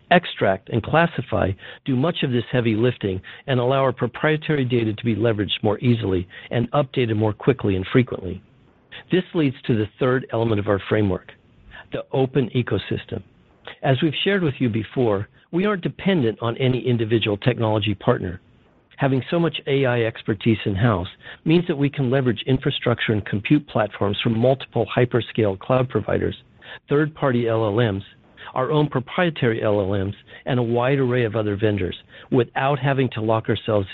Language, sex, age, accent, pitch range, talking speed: English, male, 50-69, American, 105-135 Hz, 155 wpm